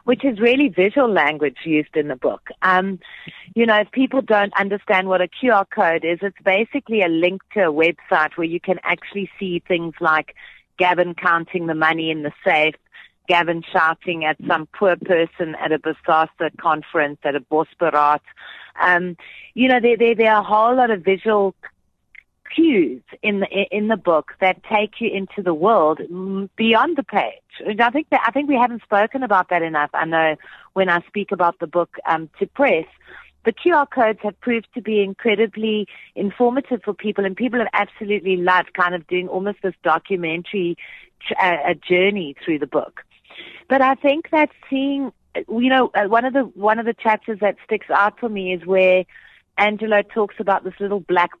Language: English